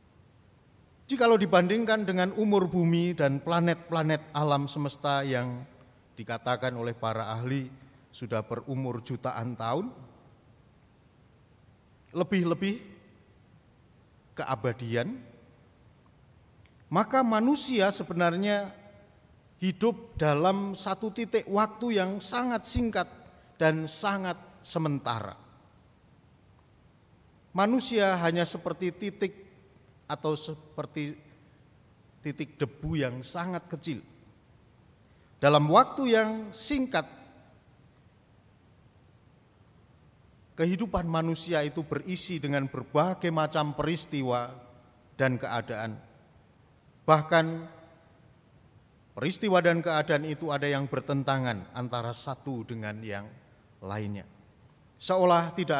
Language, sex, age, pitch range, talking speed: Malay, male, 50-69, 120-175 Hz, 80 wpm